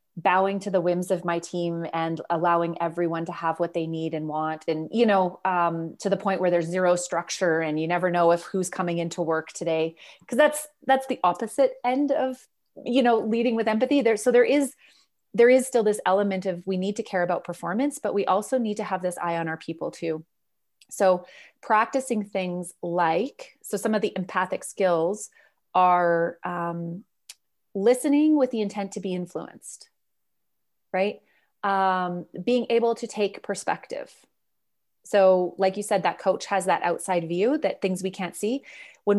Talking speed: 185 wpm